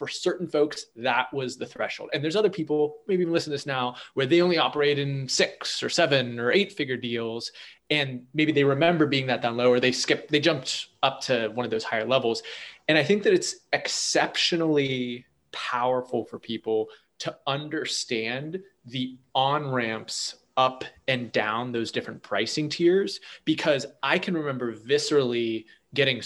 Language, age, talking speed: English, 20-39, 170 wpm